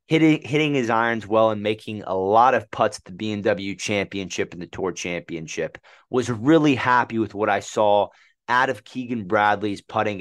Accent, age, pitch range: American, 30-49, 100-125 Hz